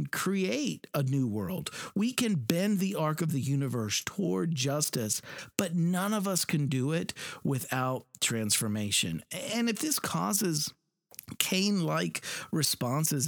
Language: English